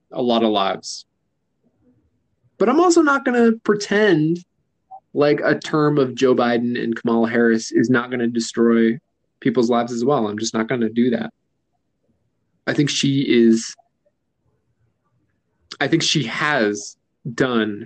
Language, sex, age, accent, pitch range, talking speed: English, male, 20-39, American, 115-145 Hz, 150 wpm